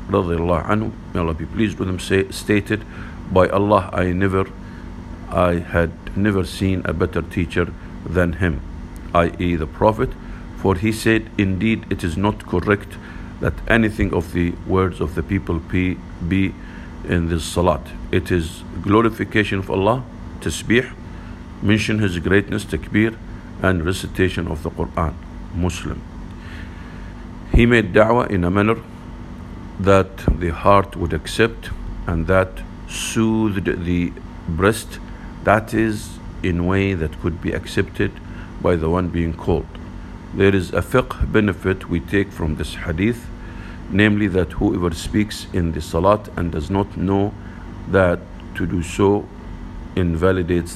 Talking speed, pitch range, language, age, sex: 140 wpm, 85-100 Hz, English, 50-69, male